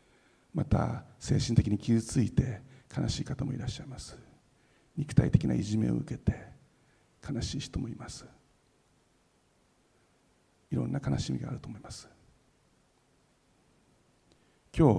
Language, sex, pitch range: Japanese, male, 110-135 Hz